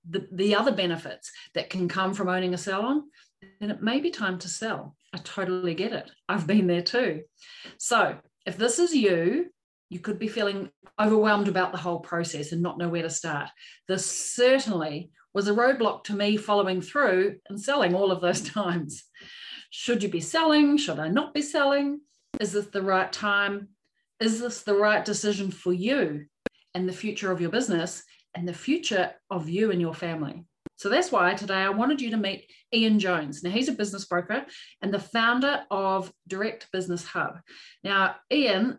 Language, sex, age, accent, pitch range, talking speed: English, female, 40-59, Australian, 180-235 Hz, 185 wpm